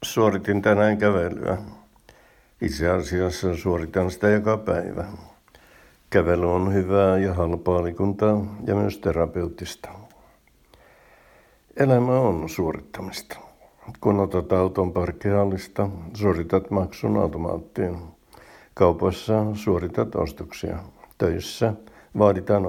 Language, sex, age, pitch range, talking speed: Finnish, male, 60-79, 90-105 Hz, 85 wpm